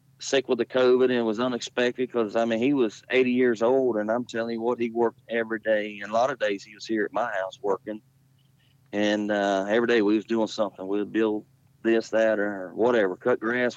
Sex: male